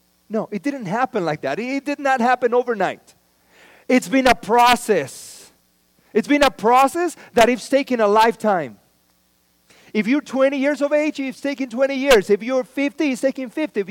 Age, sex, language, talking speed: 40-59, male, English, 175 wpm